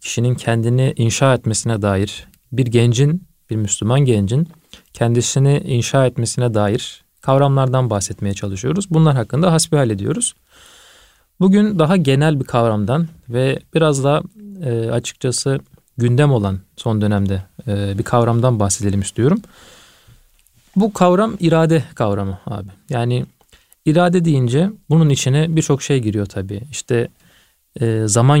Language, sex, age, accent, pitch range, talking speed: Turkish, male, 40-59, native, 110-150 Hz, 115 wpm